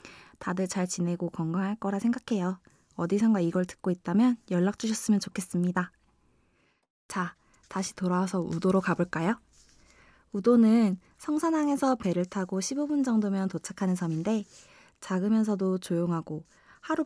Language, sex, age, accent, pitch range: Korean, female, 20-39, native, 175-230 Hz